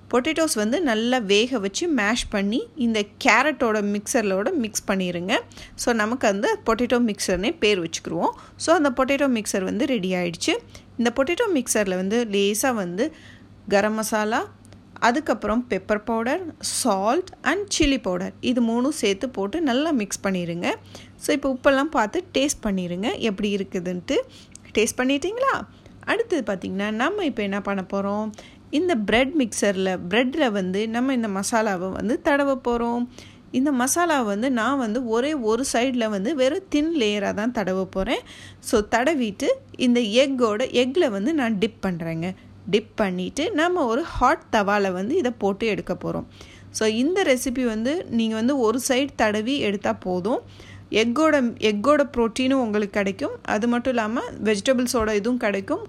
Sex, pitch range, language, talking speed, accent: female, 205-270 Hz, Tamil, 140 wpm, native